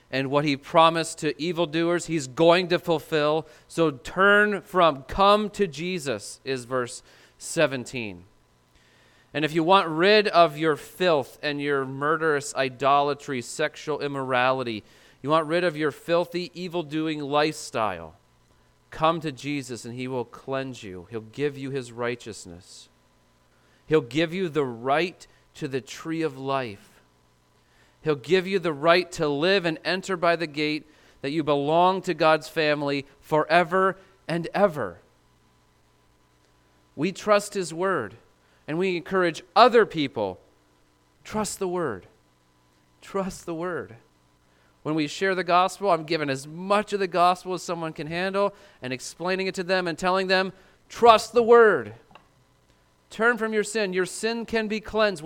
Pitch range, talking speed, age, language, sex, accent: 130-180 Hz, 150 wpm, 40-59, English, male, American